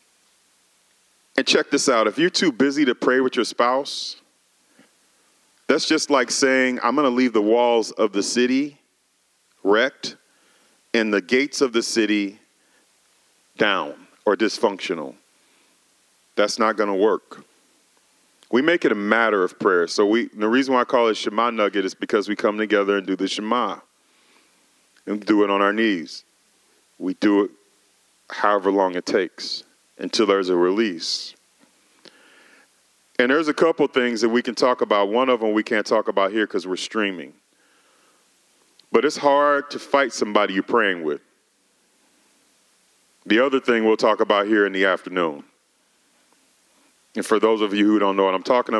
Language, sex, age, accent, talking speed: English, male, 40-59, American, 165 wpm